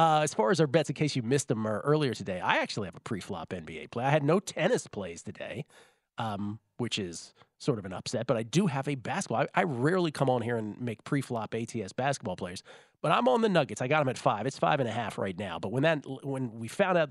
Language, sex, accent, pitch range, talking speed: English, male, American, 120-155 Hz, 265 wpm